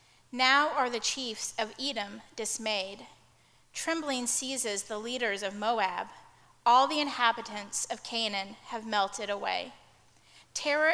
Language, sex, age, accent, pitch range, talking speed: English, female, 30-49, American, 215-260 Hz, 120 wpm